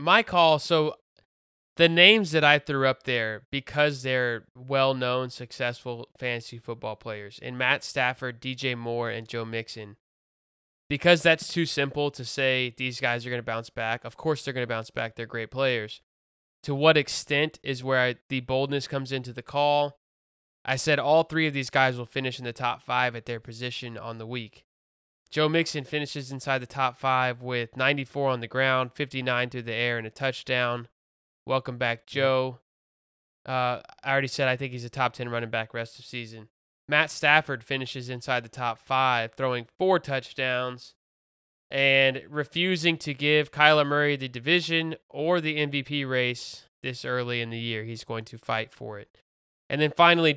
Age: 20-39